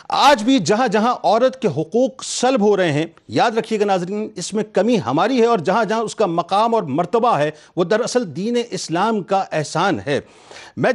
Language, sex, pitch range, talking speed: Urdu, male, 185-240 Hz, 205 wpm